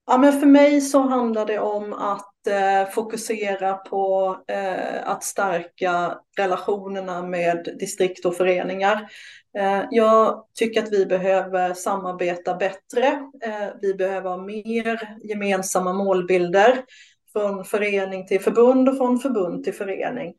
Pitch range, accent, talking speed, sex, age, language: 190-225 Hz, Swedish, 110 wpm, female, 30-49, English